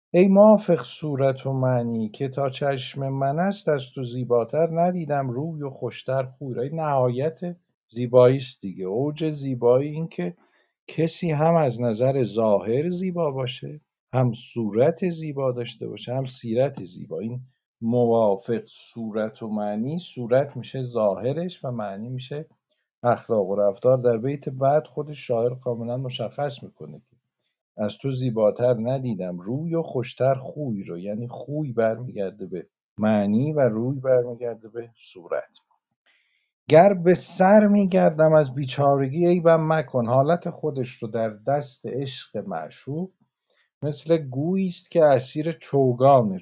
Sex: male